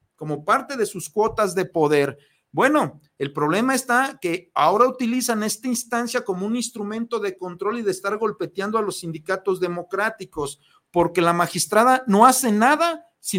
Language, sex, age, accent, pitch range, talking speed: Spanish, male, 50-69, Mexican, 180-235 Hz, 160 wpm